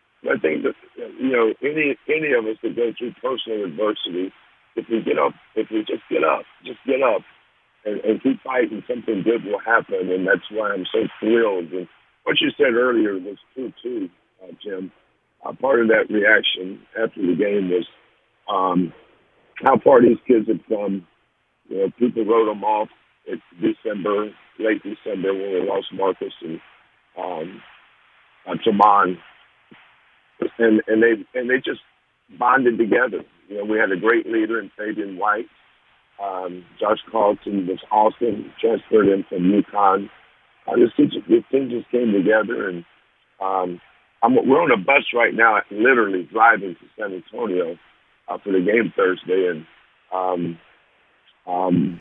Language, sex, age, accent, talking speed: English, male, 50-69, American, 160 wpm